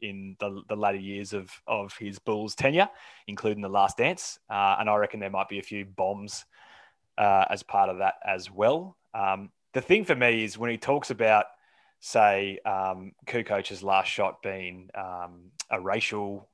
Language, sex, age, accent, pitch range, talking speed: English, male, 20-39, Australian, 100-120 Hz, 180 wpm